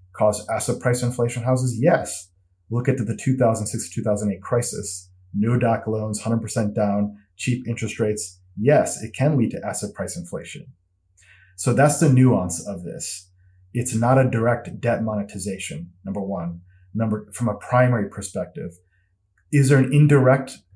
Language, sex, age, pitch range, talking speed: English, male, 30-49, 95-130 Hz, 145 wpm